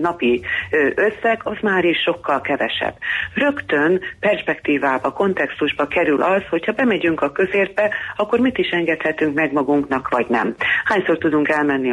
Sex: female